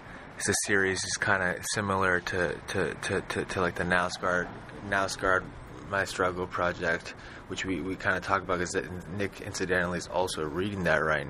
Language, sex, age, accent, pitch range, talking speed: English, male, 20-39, American, 85-95 Hz, 175 wpm